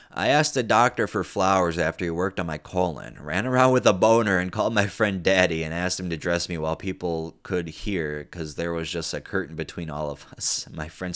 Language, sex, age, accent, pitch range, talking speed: English, male, 20-39, American, 80-105 Hz, 235 wpm